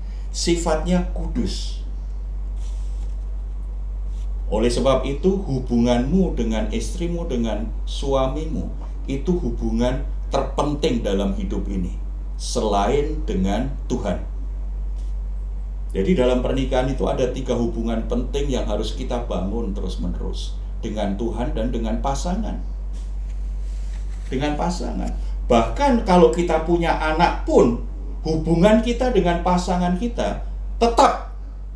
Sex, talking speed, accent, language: male, 95 wpm, native, Indonesian